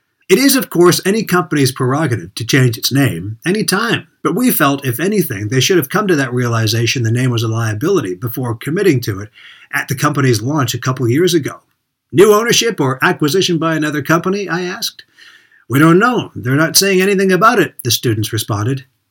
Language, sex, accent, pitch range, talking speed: English, male, American, 130-175 Hz, 200 wpm